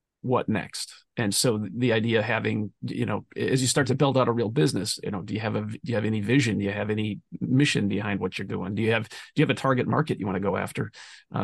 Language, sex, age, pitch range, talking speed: English, male, 40-59, 115-140 Hz, 285 wpm